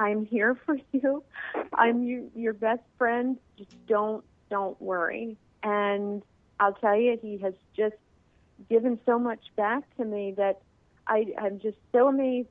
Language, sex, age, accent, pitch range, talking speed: English, female, 40-59, American, 210-245 Hz, 150 wpm